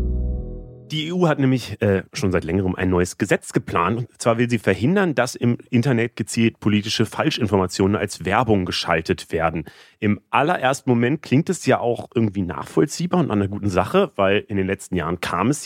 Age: 30-49